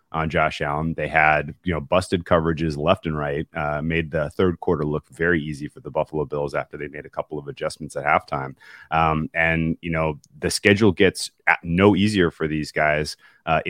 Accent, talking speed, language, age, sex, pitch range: American, 200 wpm, English, 30-49, male, 80-95 Hz